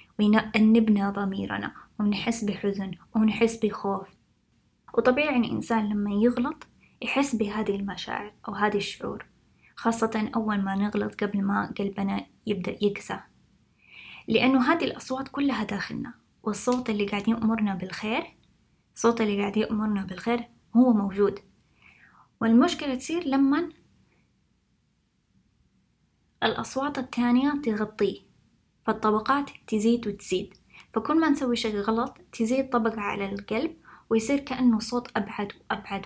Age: 20-39